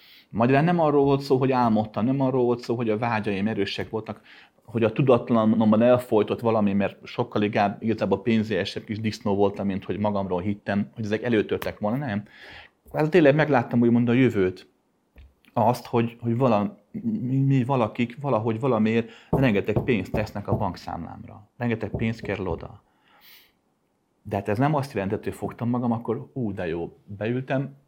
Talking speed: 160 wpm